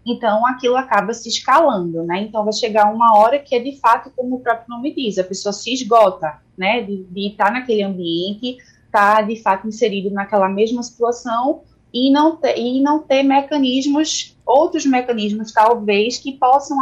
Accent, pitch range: Brazilian, 195-240 Hz